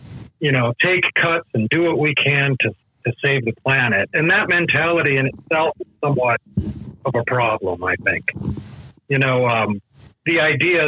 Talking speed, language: 170 wpm, English